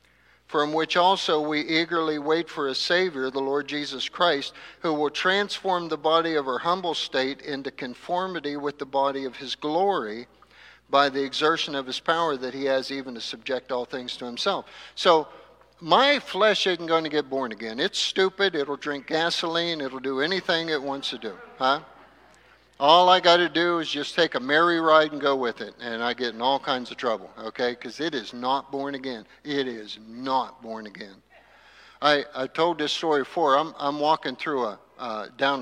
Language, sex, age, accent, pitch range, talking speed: English, male, 50-69, American, 130-170 Hz, 195 wpm